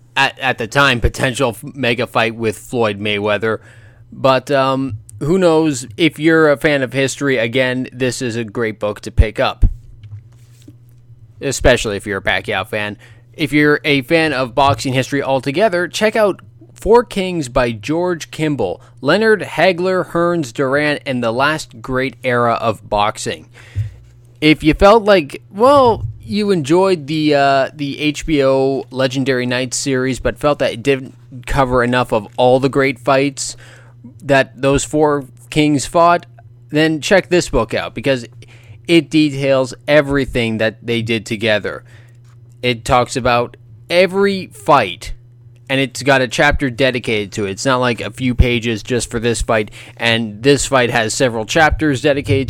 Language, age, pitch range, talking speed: English, 20-39, 120-145 Hz, 155 wpm